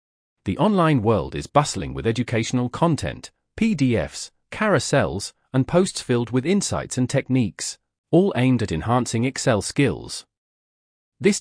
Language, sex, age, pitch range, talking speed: English, male, 40-59, 110-145 Hz, 125 wpm